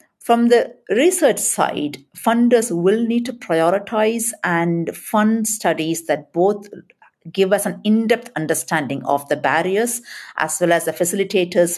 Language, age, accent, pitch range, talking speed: English, 50-69, Indian, 150-190 Hz, 140 wpm